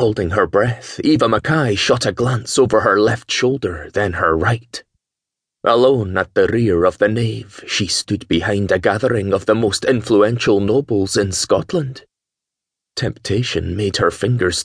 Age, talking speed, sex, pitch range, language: 30-49, 155 wpm, male, 100-125 Hz, English